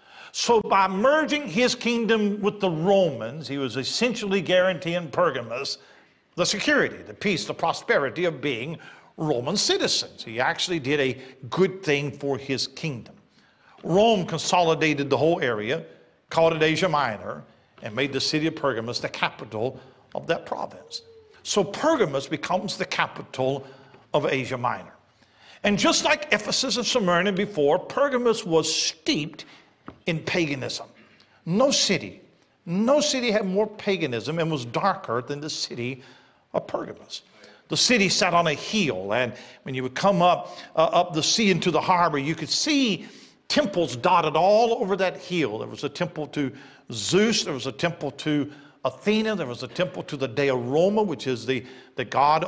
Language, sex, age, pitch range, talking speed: English, male, 50-69, 140-210 Hz, 160 wpm